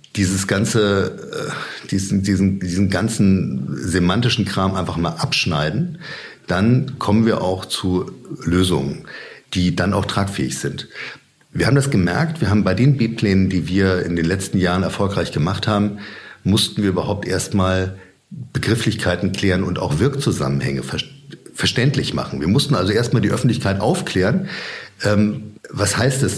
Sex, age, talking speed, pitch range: male, 50-69, 140 wpm, 95-120 Hz